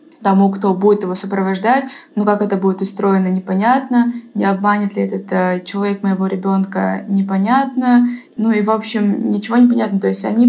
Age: 20-39